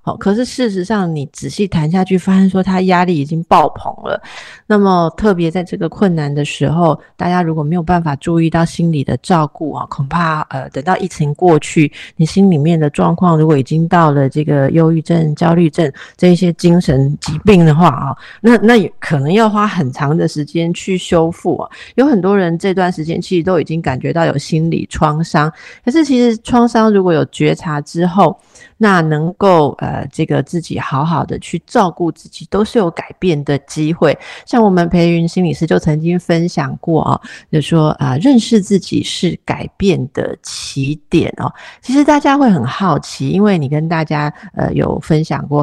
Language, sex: Chinese, female